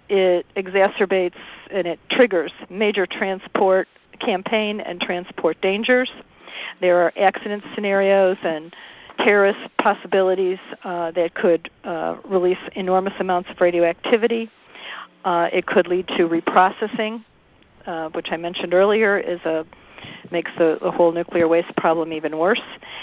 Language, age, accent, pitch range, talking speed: English, 50-69, American, 170-200 Hz, 125 wpm